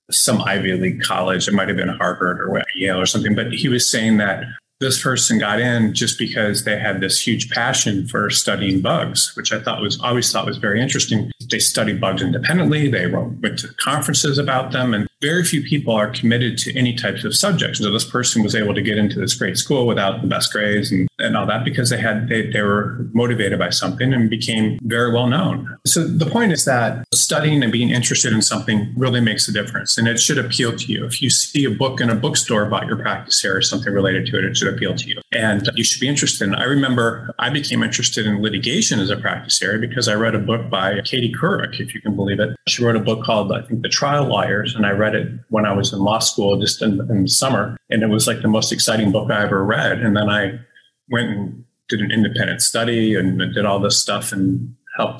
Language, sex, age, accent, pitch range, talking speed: English, male, 30-49, American, 105-130 Hz, 240 wpm